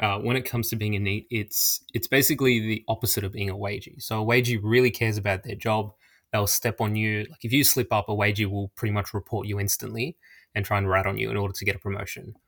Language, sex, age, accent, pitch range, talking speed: English, male, 20-39, Australian, 100-120 Hz, 260 wpm